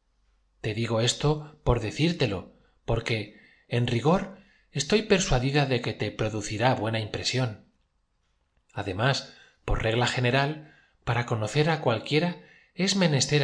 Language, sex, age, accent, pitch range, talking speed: Spanish, male, 30-49, Spanish, 105-140 Hz, 115 wpm